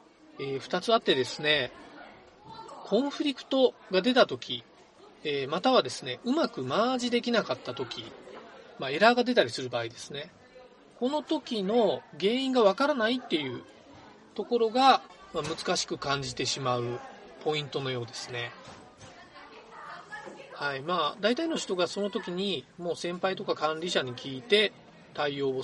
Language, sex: Japanese, male